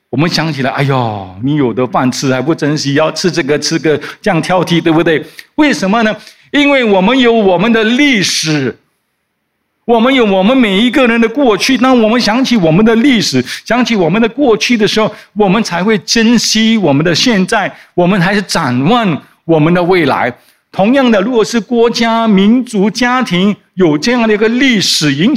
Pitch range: 160-225 Hz